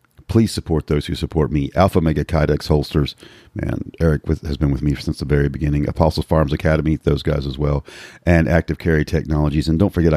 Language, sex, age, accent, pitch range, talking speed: English, male, 40-59, American, 75-90 Hz, 200 wpm